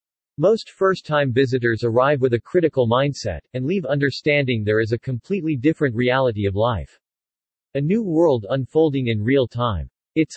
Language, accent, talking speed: English, American, 155 wpm